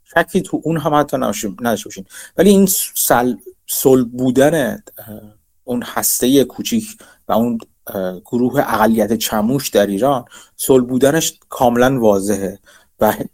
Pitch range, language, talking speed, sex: 90-135 Hz, Persian, 115 wpm, male